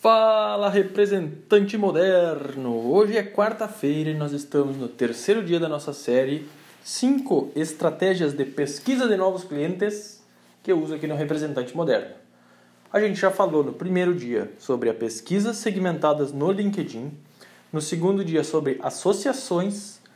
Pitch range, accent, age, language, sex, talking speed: 150-215 Hz, Brazilian, 20-39, Portuguese, male, 140 wpm